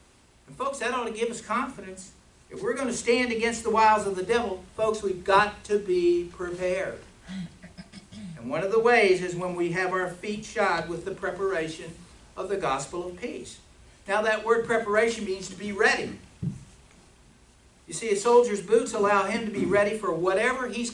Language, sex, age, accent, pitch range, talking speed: English, male, 60-79, American, 175-230 Hz, 190 wpm